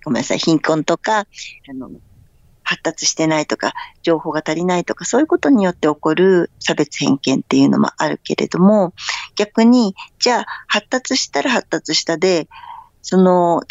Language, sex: Japanese, female